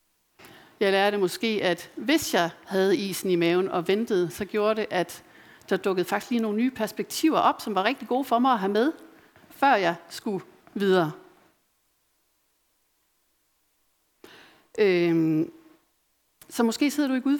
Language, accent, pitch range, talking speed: Danish, native, 195-255 Hz, 150 wpm